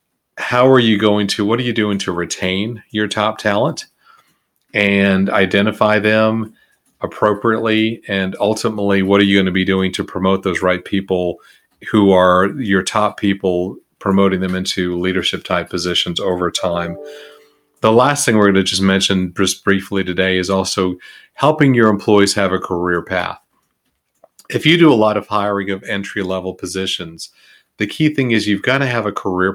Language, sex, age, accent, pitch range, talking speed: English, male, 40-59, American, 95-110 Hz, 175 wpm